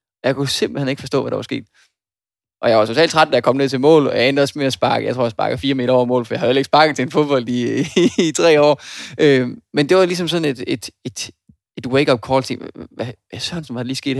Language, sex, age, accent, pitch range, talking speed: Danish, male, 20-39, native, 120-140 Hz, 295 wpm